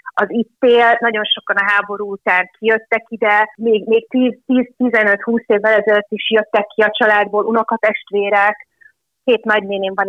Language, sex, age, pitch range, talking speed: Hungarian, female, 30-49, 190-235 Hz, 145 wpm